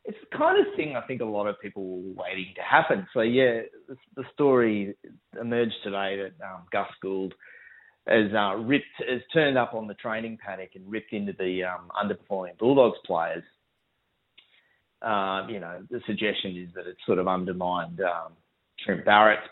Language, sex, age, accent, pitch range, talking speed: English, male, 30-49, Australian, 95-120 Hz, 180 wpm